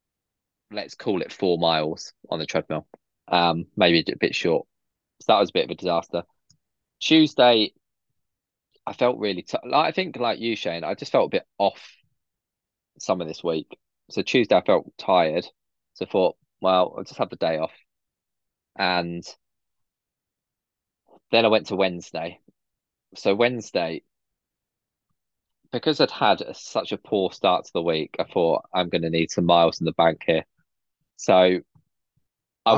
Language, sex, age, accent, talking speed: English, male, 20-39, British, 165 wpm